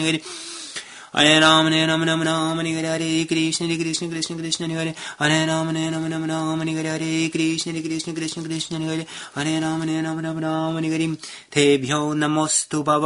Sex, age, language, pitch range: male, 30-49, English, 150-155 Hz